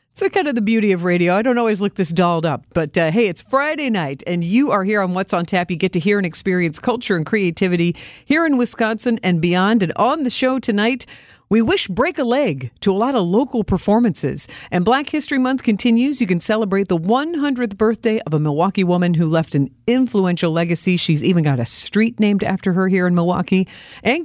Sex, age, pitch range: female, 50-69, 175-245 Hz